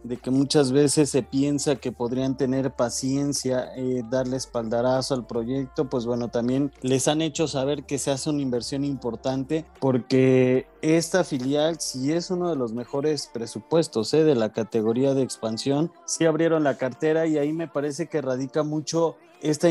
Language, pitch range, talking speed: Spanish, 125-150 Hz, 175 wpm